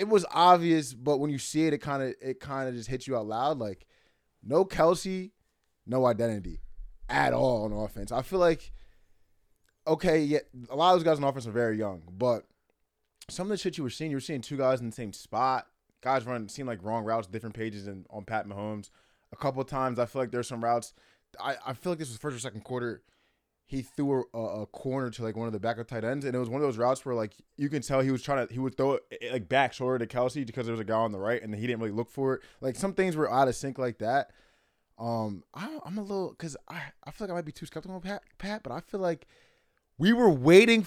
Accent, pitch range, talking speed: American, 115-170 Hz, 260 wpm